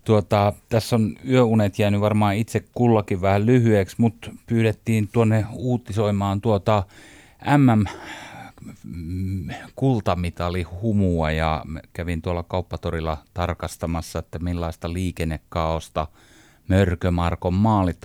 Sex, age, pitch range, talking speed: male, 30-49, 85-110 Hz, 90 wpm